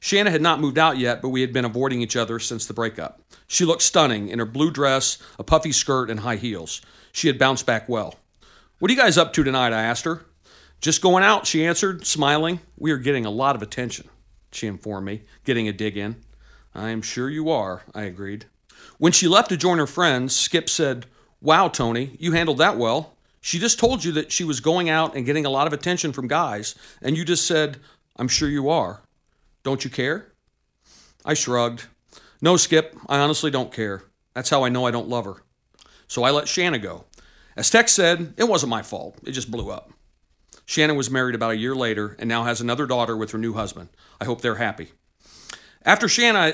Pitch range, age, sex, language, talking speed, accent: 115-160 Hz, 40-59, male, English, 215 wpm, American